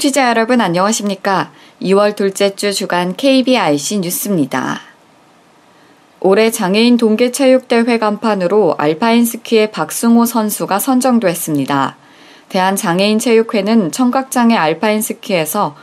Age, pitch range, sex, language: 20-39, 185-230 Hz, female, Korean